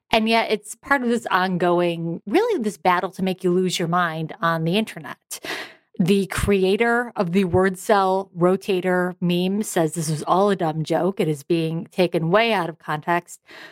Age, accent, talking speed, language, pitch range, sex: 30-49, American, 185 wpm, English, 175-215 Hz, female